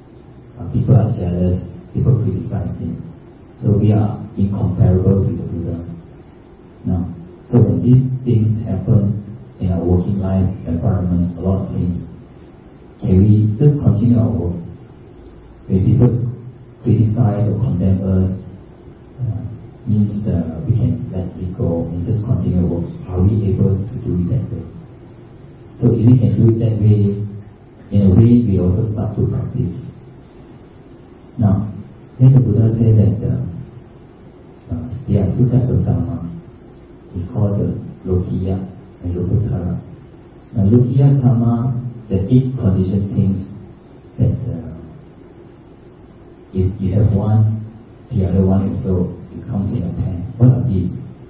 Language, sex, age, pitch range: Thai, male, 40-59, 95-120 Hz